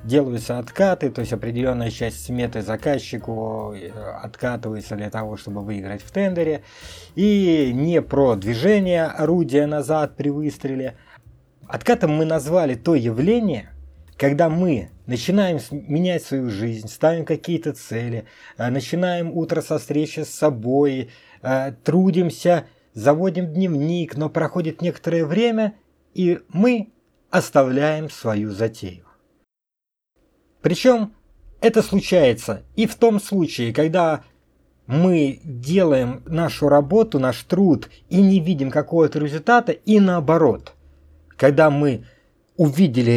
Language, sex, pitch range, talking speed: Russian, male, 120-180 Hz, 110 wpm